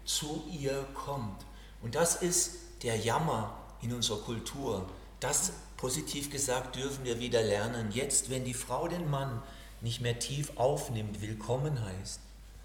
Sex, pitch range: male, 105-140 Hz